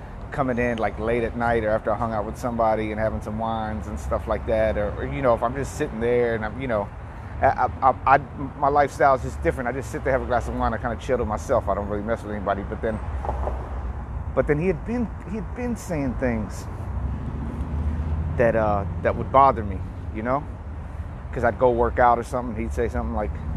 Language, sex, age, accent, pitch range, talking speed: English, male, 30-49, American, 95-125 Hz, 245 wpm